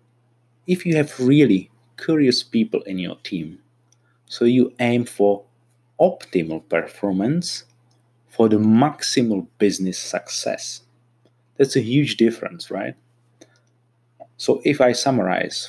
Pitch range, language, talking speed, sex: 105-125 Hz, English, 110 wpm, male